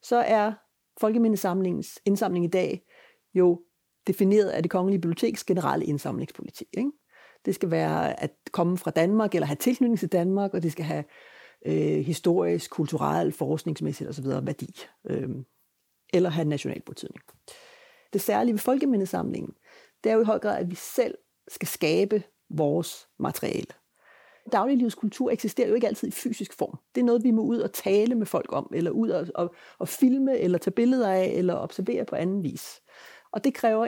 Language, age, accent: Danish, 40-59, native